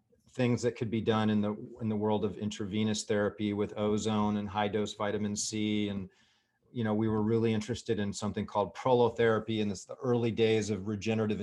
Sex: male